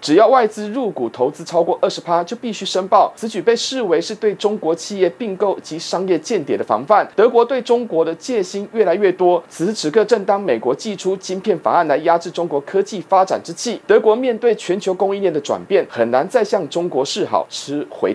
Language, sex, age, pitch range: Chinese, male, 30-49, 170-220 Hz